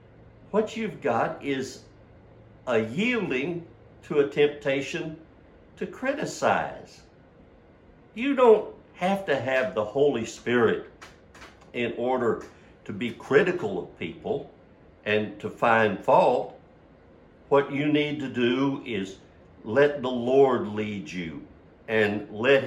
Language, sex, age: English, male, 60-79